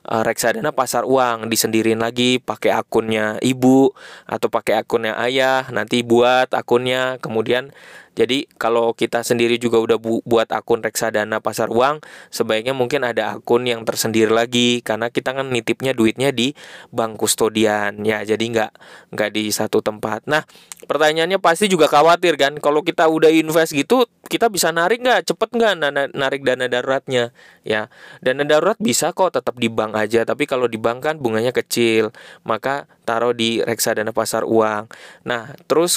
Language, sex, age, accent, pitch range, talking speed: Indonesian, male, 20-39, native, 115-145 Hz, 160 wpm